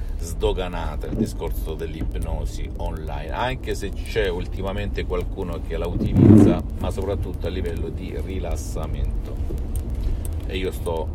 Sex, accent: male, native